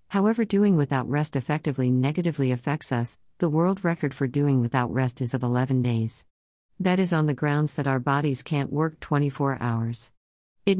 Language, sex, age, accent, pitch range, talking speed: English, female, 50-69, American, 130-160 Hz, 180 wpm